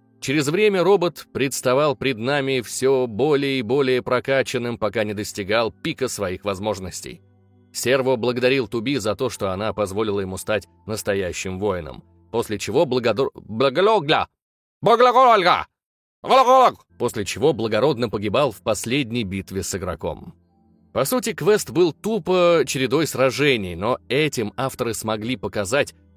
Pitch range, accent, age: 110-150 Hz, native, 30-49